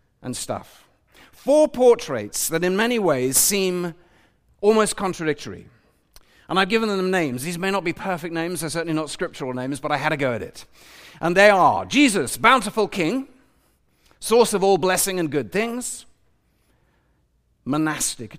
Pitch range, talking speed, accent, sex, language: 130-190 Hz, 155 wpm, British, male, English